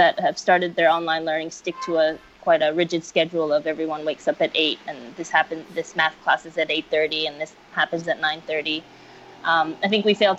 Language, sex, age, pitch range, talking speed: English, female, 20-39, 165-190 Hz, 225 wpm